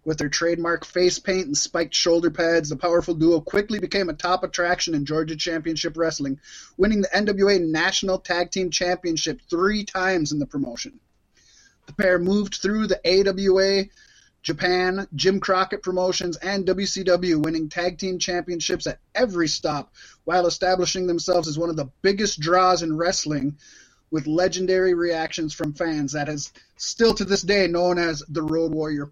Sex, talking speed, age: male, 165 wpm, 30-49